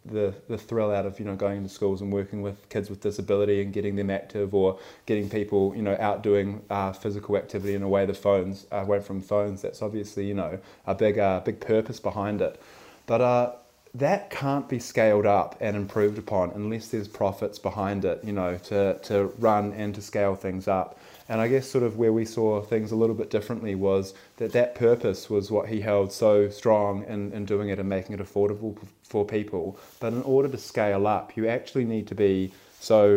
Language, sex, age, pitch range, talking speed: English, male, 20-39, 100-110 Hz, 215 wpm